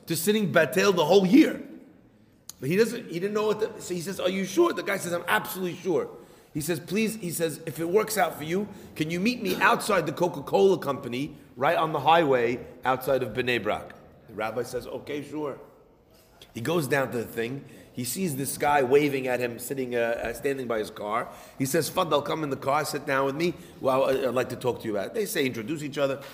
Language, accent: English, American